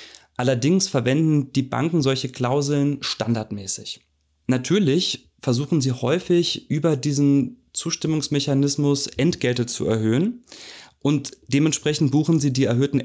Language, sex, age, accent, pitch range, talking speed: German, male, 30-49, German, 120-140 Hz, 105 wpm